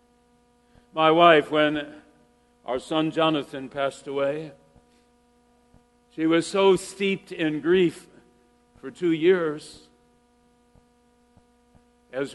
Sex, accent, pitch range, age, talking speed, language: male, American, 160-215 Hz, 60-79, 85 wpm, English